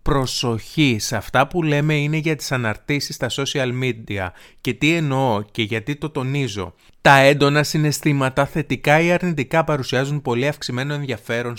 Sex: male